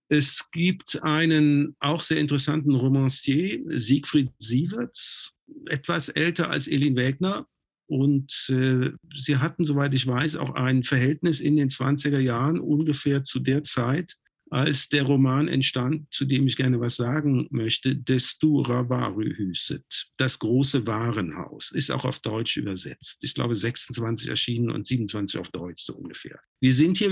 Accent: German